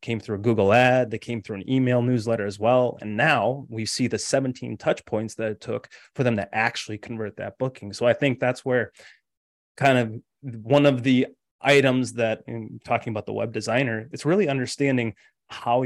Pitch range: 110-130 Hz